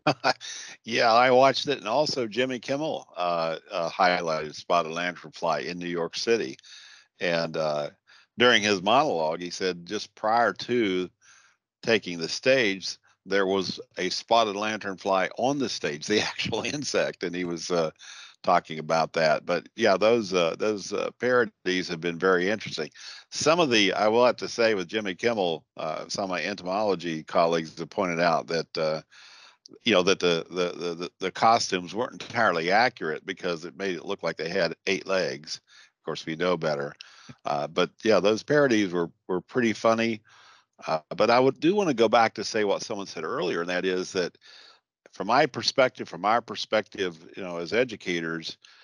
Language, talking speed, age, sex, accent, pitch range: English, 180 wpm, 50-69, male, American, 85-110 Hz